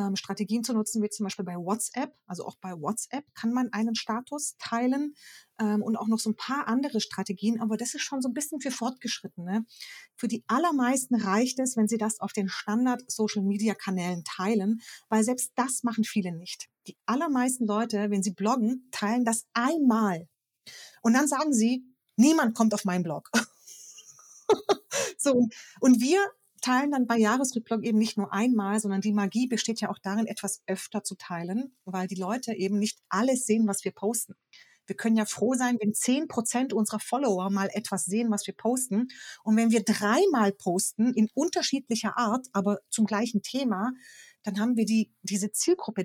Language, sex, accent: German, female, German